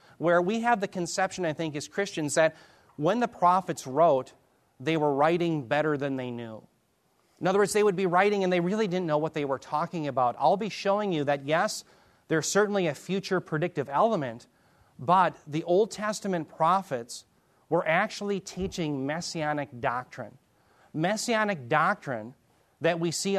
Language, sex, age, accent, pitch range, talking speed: English, male, 30-49, American, 140-180 Hz, 165 wpm